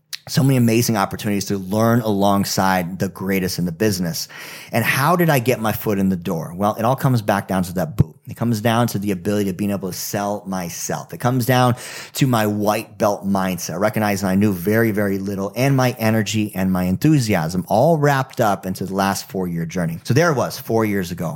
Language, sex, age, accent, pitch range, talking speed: English, male, 30-49, American, 95-115 Hz, 220 wpm